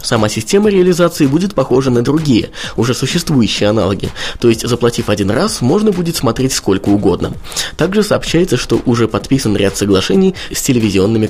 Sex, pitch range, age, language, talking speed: male, 105-140 Hz, 20-39, Russian, 155 wpm